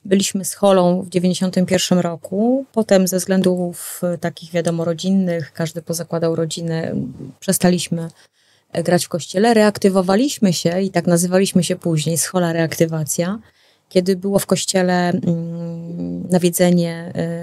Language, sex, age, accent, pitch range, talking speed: Polish, female, 30-49, native, 170-195 Hz, 115 wpm